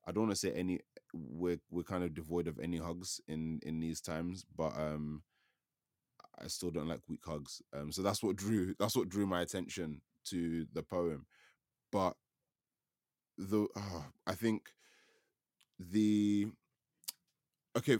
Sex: male